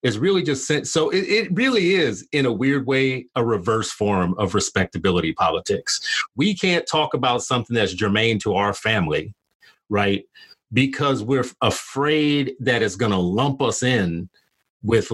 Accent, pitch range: American, 110-160 Hz